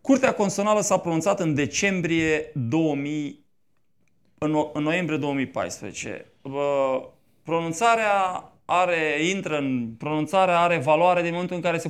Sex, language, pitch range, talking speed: male, Romanian, 135-190 Hz, 110 wpm